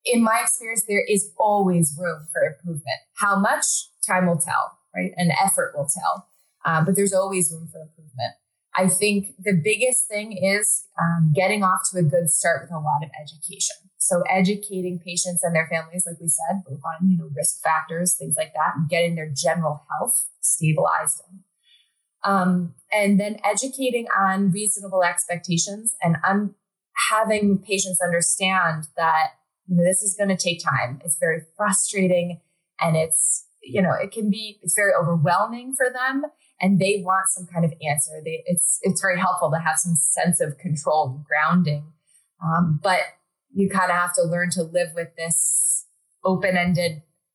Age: 20-39